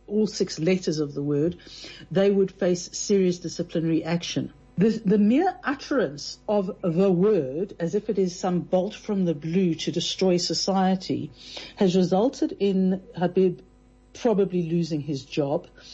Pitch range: 165-205 Hz